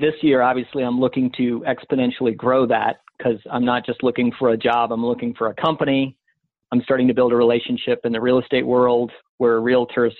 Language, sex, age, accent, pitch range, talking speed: English, male, 40-59, American, 120-135 Hz, 205 wpm